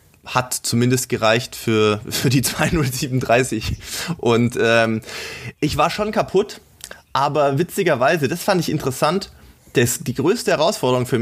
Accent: German